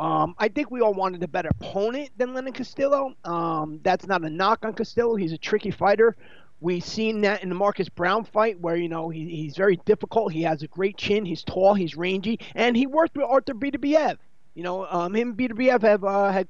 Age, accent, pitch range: 30-49, American, 170-230 Hz